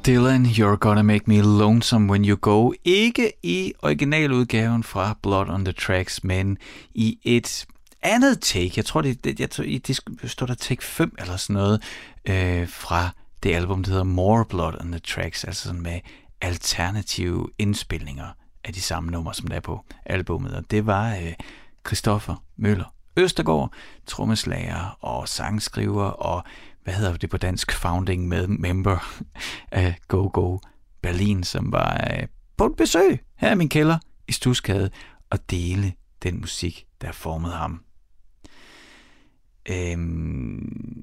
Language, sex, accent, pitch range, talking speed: Danish, male, native, 90-120 Hz, 150 wpm